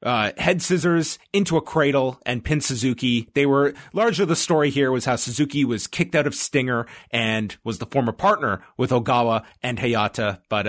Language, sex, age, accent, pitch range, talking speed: English, male, 30-49, American, 110-160 Hz, 185 wpm